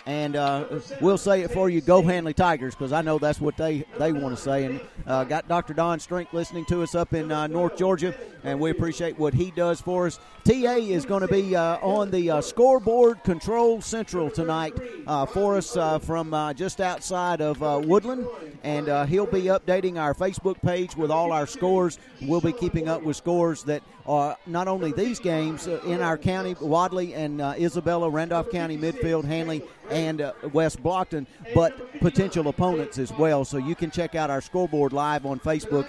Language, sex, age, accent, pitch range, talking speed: English, male, 50-69, American, 150-180 Hz, 200 wpm